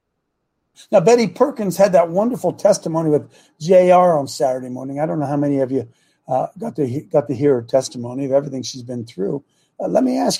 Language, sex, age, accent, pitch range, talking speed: English, male, 60-79, American, 145-200 Hz, 200 wpm